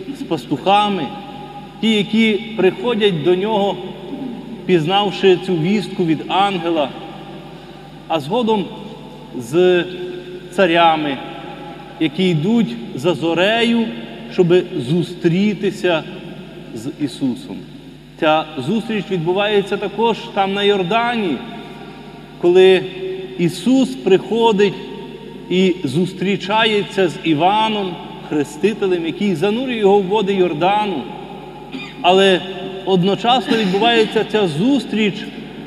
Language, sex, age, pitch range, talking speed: Ukrainian, male, 30-49, 180-220 Hz, 85 wpm